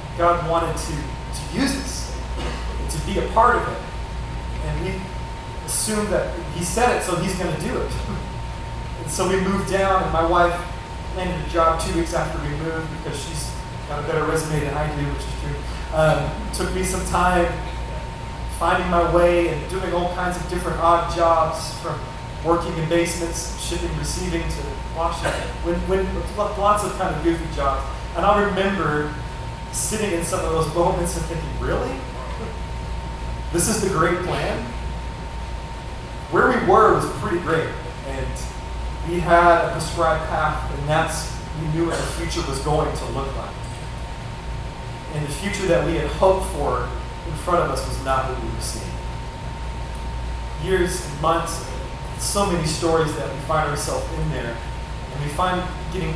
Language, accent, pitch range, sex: English, American, 135-175 Hz, male